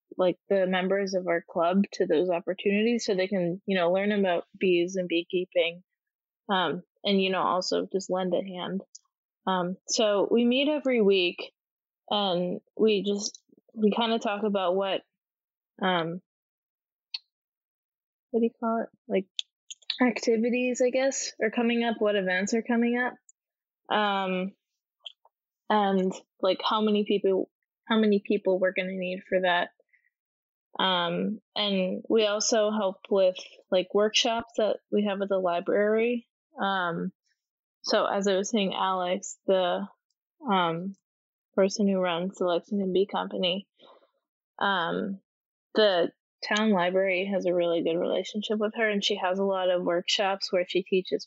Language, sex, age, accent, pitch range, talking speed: English, female, 10-29, American, 185-215 Hz, 150 wpm